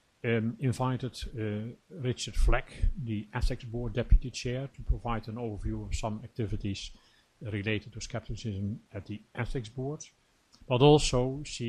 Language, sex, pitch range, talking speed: English, male, 105-120 Hz, 140 wpm